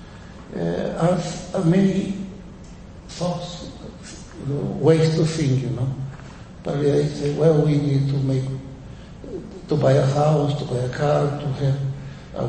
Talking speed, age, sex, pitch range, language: 135 wpm, 60-79, male, 140-160 Hz, English